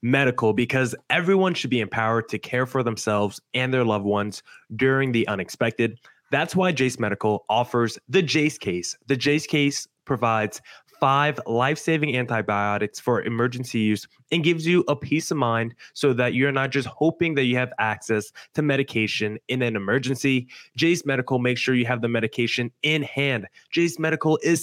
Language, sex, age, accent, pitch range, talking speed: English, male, 20-39, American, 115-150 Hz, 170 wpm